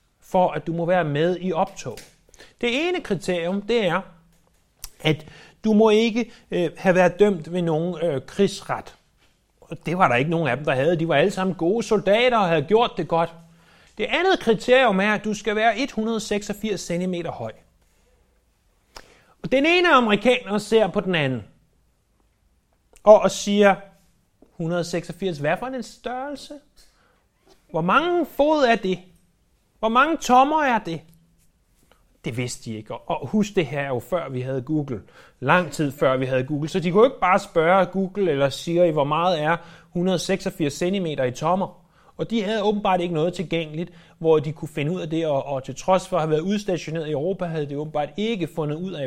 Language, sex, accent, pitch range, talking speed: Danish, male, native, 155-205 Hz, 175 wpm